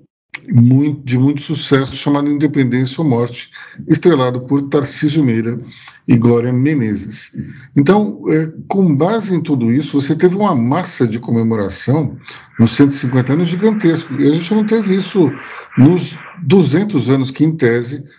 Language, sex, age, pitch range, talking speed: Portuguese, male, 60-79, 125-160 Hz, 140 wpm